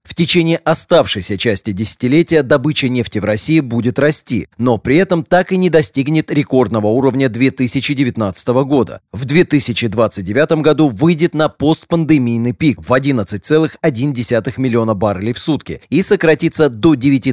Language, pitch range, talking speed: Russian, 120-150 Hz, 130 wpm